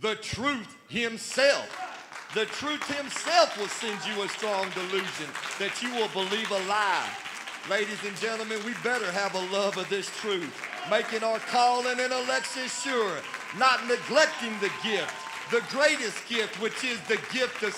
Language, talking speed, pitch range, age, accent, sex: English, 160 wpm, 180-235 Hz, 40-59, American, male